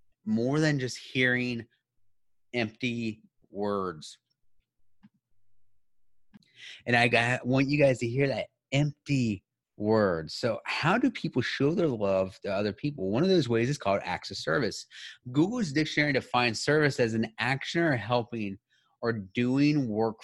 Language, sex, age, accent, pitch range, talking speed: English, male, 30-49, American, 100-135 Hz, 140 wpm